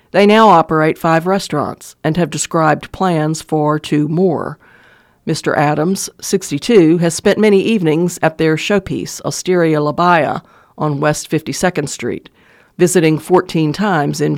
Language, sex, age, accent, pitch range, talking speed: English, female, 50-69, American, 150-180 Hz, 140 wpm